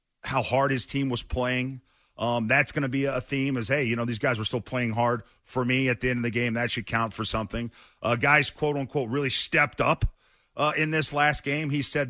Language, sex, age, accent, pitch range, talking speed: English, male, 40-59, American, 115-140 Hz, 245 wpm